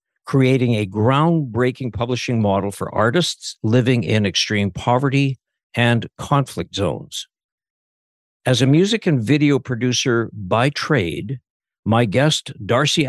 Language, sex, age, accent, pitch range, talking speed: English, male, 60-79, American, 110-145 Hz, 115 wpm